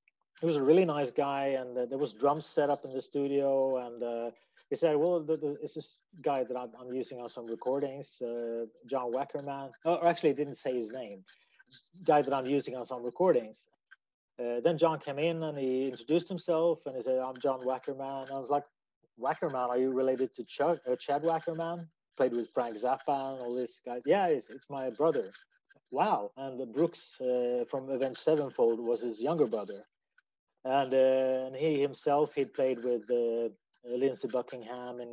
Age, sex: 30-49, male